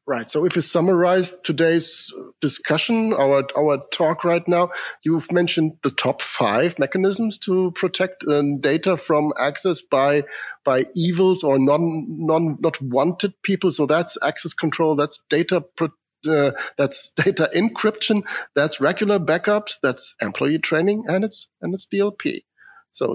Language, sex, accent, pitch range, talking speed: English, male, German, 135-180 Hz, 145 wpm